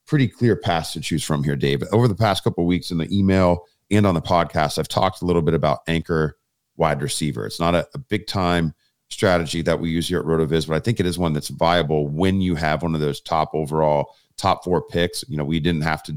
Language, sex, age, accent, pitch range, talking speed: English, male, 40-59, American, 80-100 Hz, 250 wpm